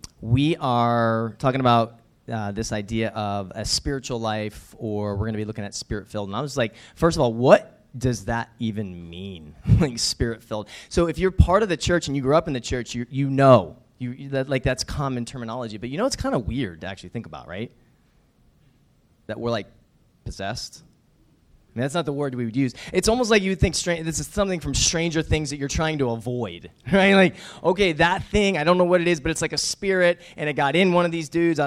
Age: 20-39